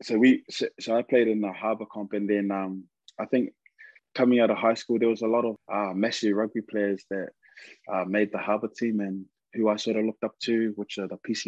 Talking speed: 240 wpm